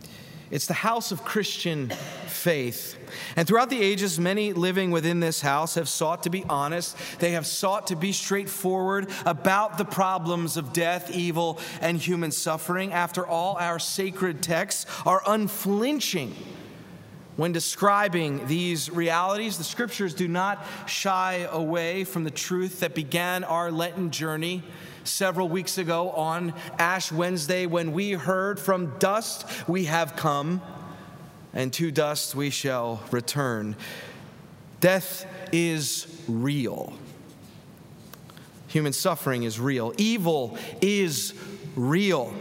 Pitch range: 155-185 Hz